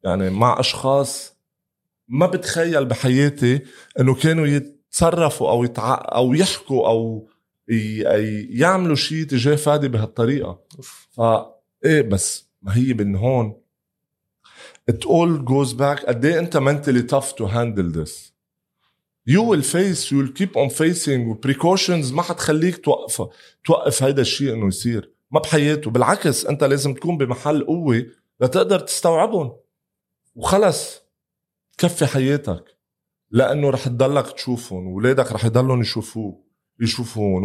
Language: Arabic